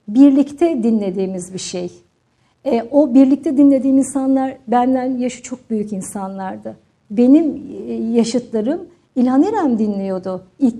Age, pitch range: 50-69, 210-260 Hz